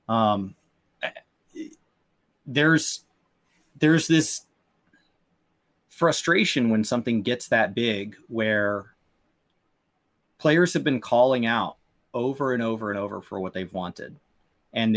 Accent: American